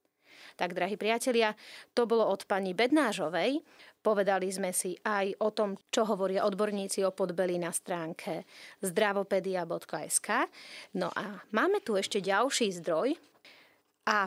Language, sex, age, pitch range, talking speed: Slovak, female, 30-49, 190-235 Hz, 125 wpm